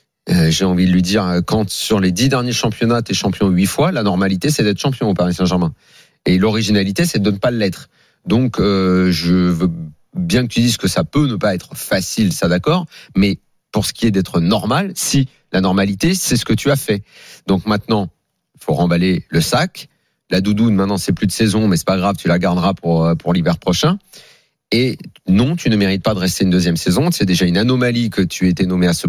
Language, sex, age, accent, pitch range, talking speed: French, male, 40-59, French, 95-135 Hz, 225 wpm